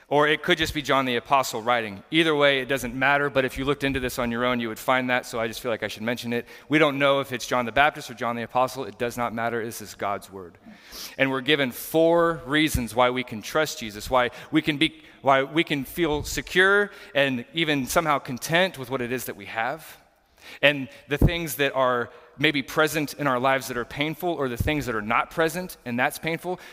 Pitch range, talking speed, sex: 120-155 Hz, 240 wpm, male